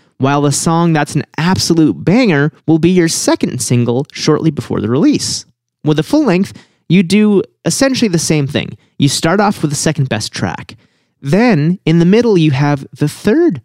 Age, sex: 30-49, male